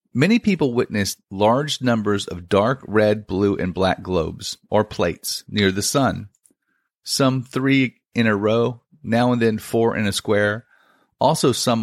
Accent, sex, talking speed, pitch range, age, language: American, male, 155 wpm, 100-130 Hz, 40-59, English